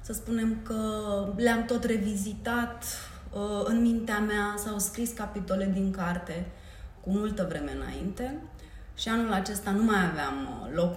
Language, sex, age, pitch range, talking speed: Romanian, female, 20-39, 195-245 Hz, 135 wpm